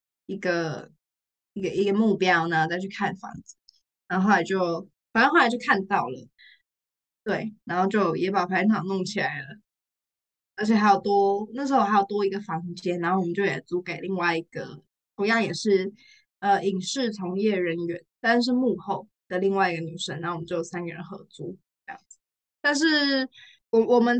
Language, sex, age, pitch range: Chinese, female, 10-29, 175-215 Hz